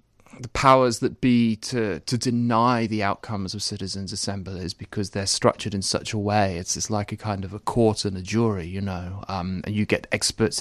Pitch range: 105-120 Hz